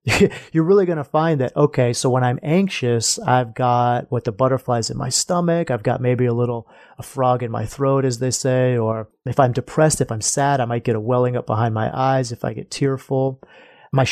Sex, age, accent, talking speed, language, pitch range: male, 30-49, American, 225 wpm, English, 120-155 Hz